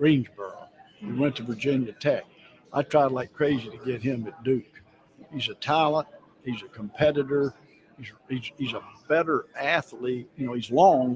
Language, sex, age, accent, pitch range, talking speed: English, male, 60-79, American, 120-150 Hz, 170 wpm